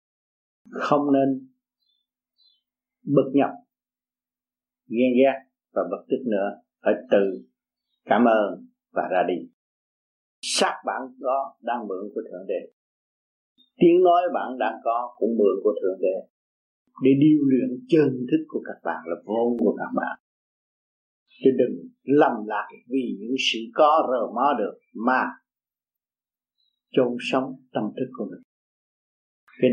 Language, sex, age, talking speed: Vietnamese, male, 50-69, 135 wpm